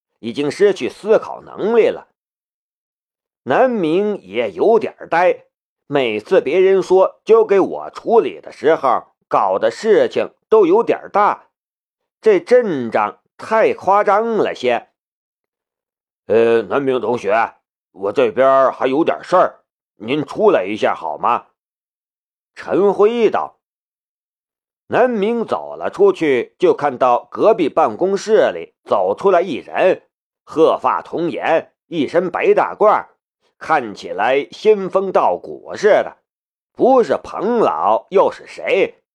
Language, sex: Chinese, male